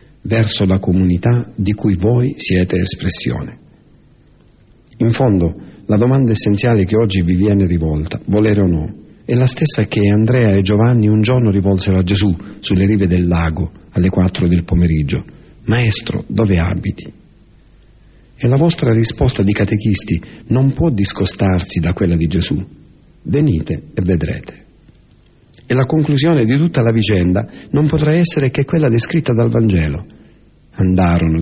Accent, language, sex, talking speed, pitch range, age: native, Italian, male, 145 wpm, 90-115 Hz, 50-69